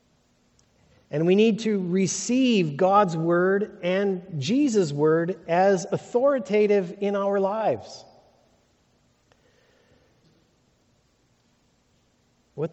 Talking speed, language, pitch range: 75 wpm, English, 125-175 Hz